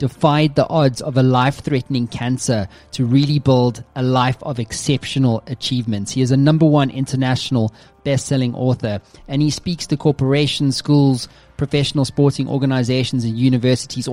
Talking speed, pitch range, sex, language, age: 155 wpm, 115-140 Hz, male, English, 20-39